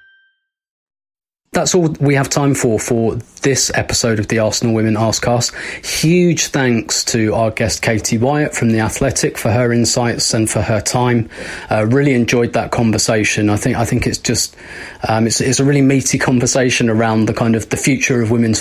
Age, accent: 20-39, British